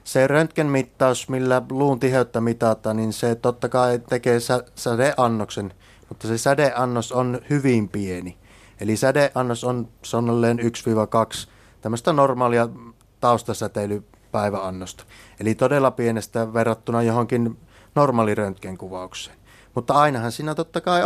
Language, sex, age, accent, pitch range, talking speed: Finnish, male, 30-49, native, 110-130 Hz, 105 wpm